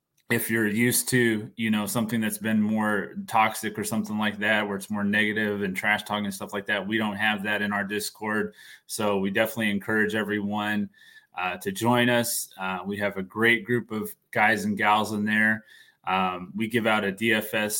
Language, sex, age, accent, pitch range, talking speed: English, male, 20-39, American, 105-120 Hz, 200 wpm